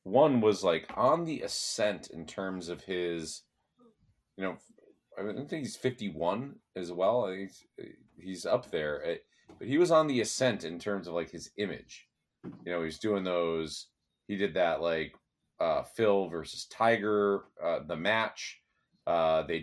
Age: 30-49